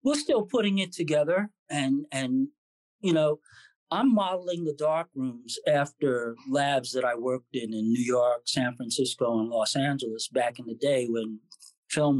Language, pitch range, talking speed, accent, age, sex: English, 125-165 Hz, 165 wpm, American, 40-59, male